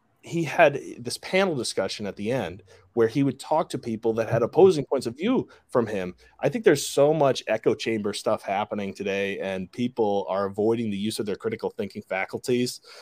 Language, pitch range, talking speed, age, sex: English, 105-140 Hz, 200 wpm, 30-49, male